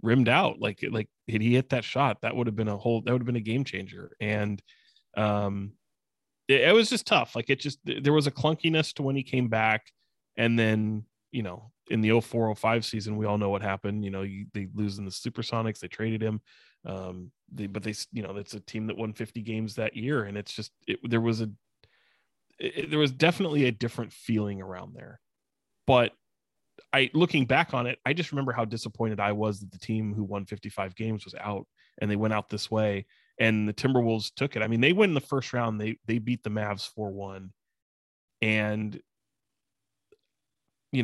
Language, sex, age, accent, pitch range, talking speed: English, male, 20-39, American, 105-120 Hz, 210 wpm